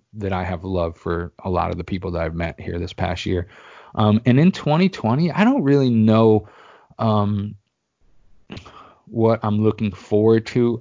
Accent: American